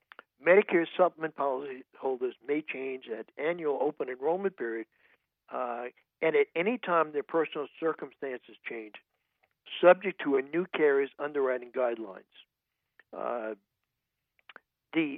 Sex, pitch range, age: male, 135-195 Hz, 60-79